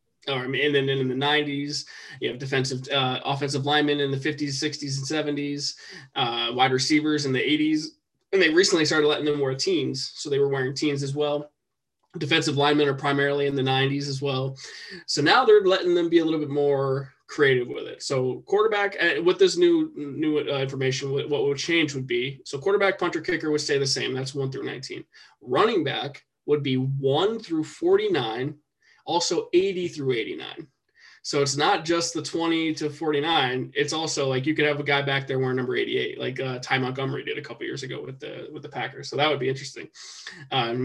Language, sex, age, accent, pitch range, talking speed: English, male, 20-39, American, 135-170 Hz, 210 wpm